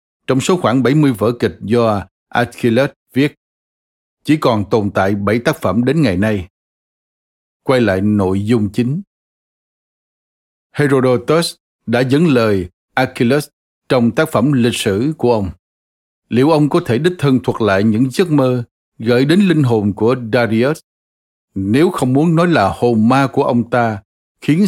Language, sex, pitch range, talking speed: Vietnamese, male, 105-145 Hz, 155 wpm